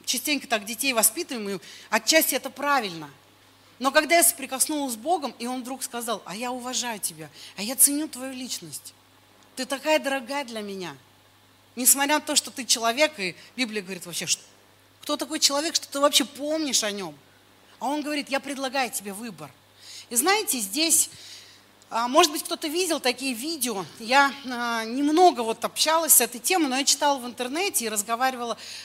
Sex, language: female, Russian